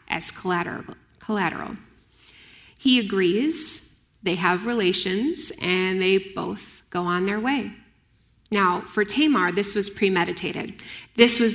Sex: female